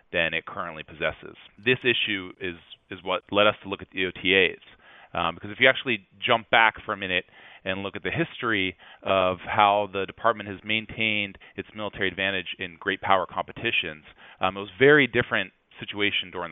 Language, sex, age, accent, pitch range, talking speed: English, male, 30-49, American, 95-110 Hz, 185 wpm